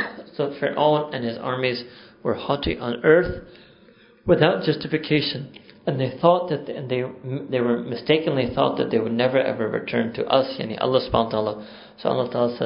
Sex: male